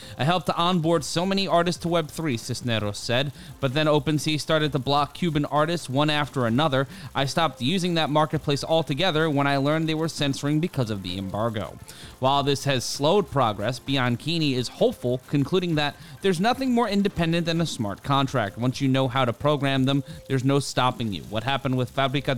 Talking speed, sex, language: 190 wpm, male, English